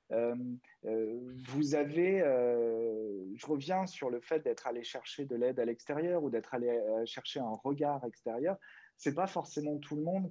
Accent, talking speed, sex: French, 180 wpm, male